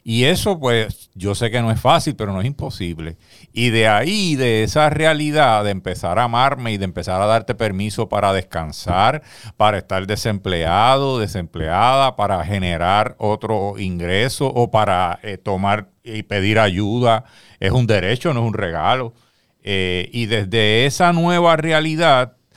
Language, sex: Spanish, male